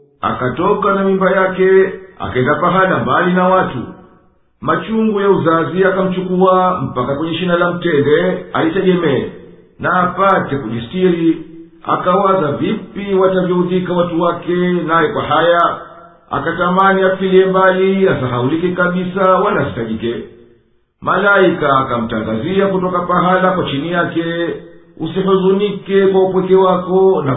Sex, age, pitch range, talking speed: male, 50-69, 160-190 Hz, 100 wpm